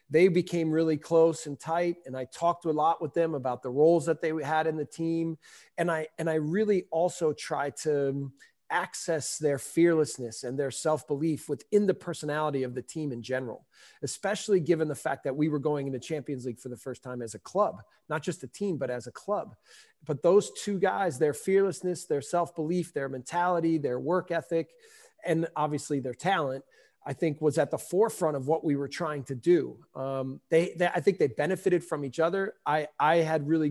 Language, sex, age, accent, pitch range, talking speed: English, male, 40-59, American, 140-165 Hz, 205 wpm